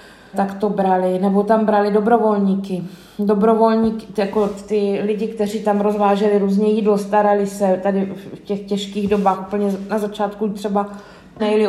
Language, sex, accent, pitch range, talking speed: Czech, female, native, 190-210 Hz, 145 wpm